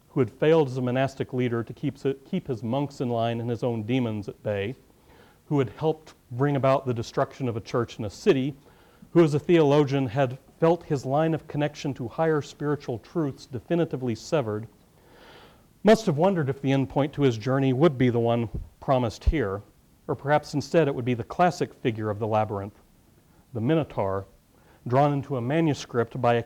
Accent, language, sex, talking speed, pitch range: American, English, male, 195 wpm, 115-145 Hz